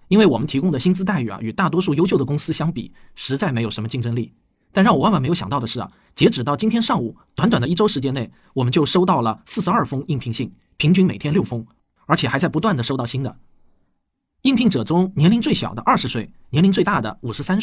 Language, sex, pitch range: Chinese, male, 120-185 Hz